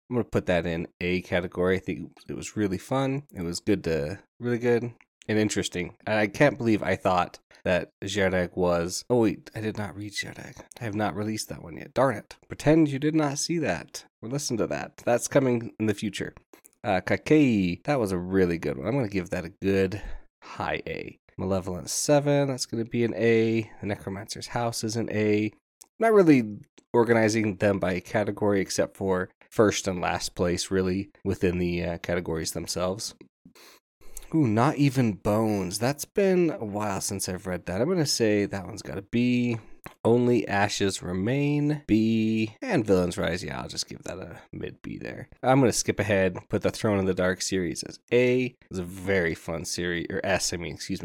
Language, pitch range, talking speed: English, 95-120 Hz, 200 wpm